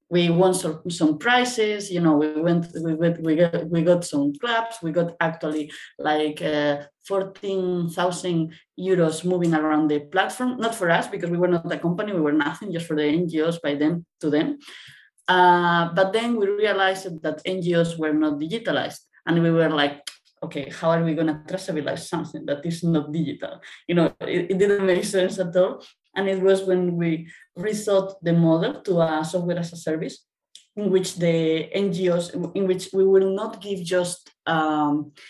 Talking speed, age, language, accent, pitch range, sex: 185 wpm, 20-39, English, Spanish, 160-190 Hz, female